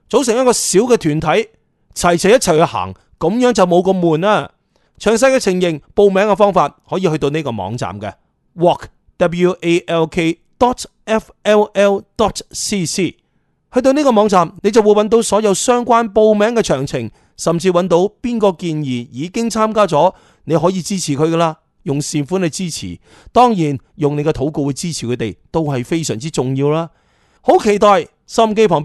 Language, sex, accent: Chinese, male, native